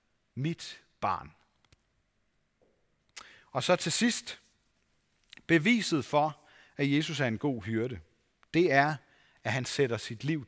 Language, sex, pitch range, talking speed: Danish, male, 120-165 Hz, 120 wpm